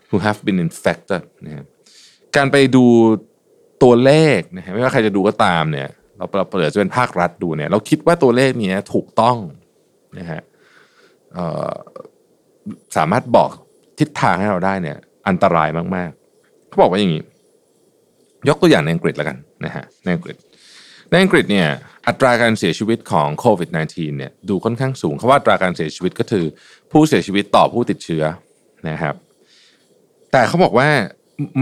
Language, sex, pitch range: Thai, male, 100-155 Hz